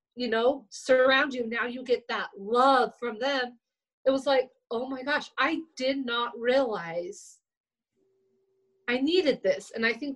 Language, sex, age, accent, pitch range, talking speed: English, female, 30-49, American, 220-275 Hz, 160 wpm